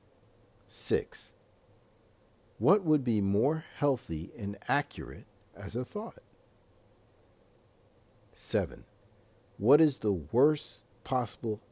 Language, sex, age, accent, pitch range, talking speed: English, male, 50-69, American, 100-120 Hz, 85 wpm